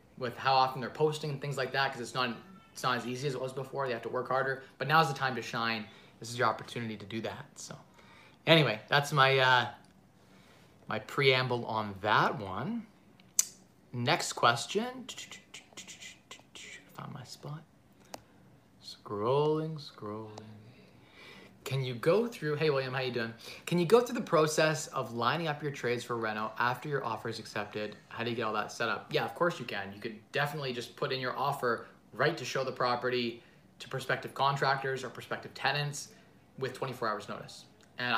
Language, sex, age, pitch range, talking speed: English, male, 20-39, 120-150 Hz, 185 wpm